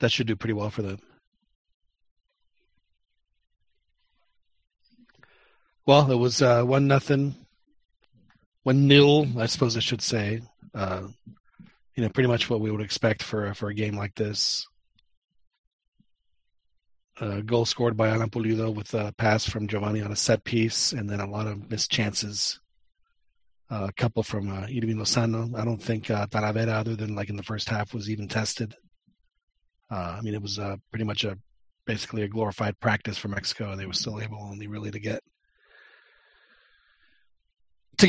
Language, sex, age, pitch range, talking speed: English, male, 40-59, 105-135 Hz, 165 wpm